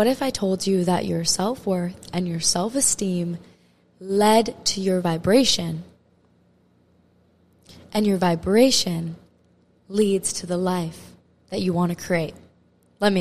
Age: 20-39